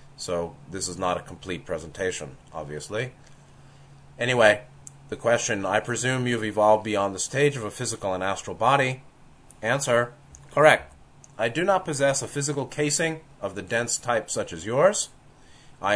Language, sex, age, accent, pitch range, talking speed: English, male, 30-49, American, 110-145 Hz, 155 wpm